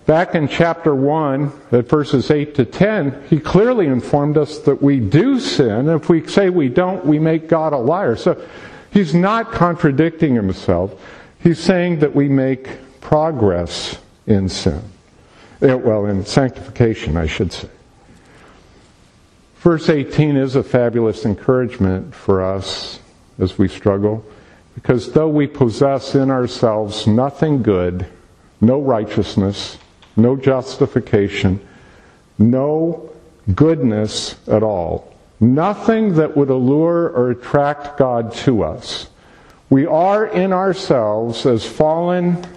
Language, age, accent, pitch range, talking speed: English, 50-69, American, 115-160 Hz, 125 wpm